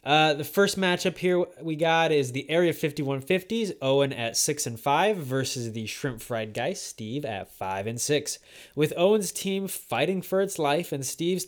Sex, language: male, English